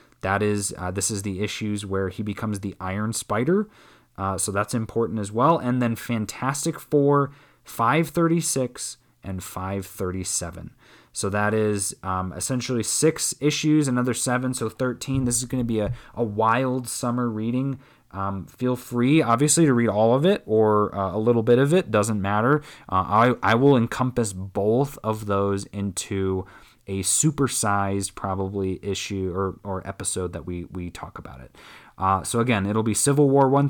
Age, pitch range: 20-39, 100-130 Hz